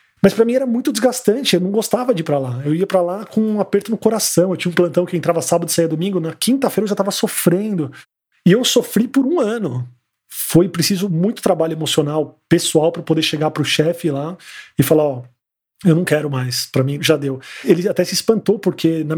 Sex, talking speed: male, 230 wpm